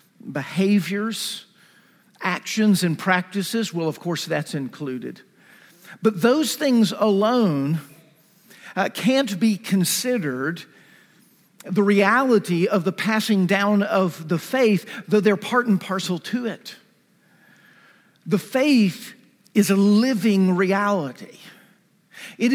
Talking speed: 105 wpm